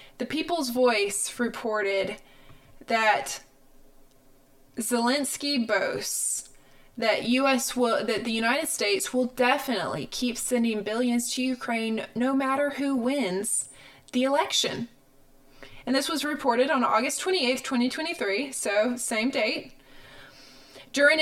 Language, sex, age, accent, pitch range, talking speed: English, female, 20-39, American, 195-260 Hz, 110 wpm